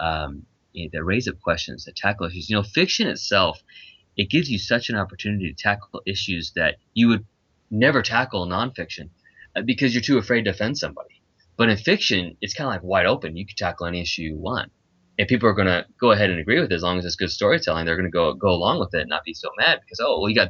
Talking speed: 255 wpm